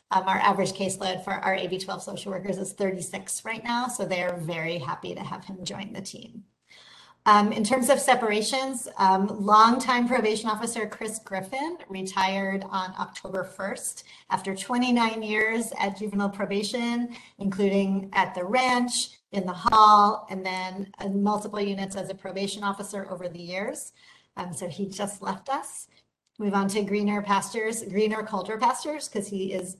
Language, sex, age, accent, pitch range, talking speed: English, female, 40-59, American, 190-225 Hz, 165 wpm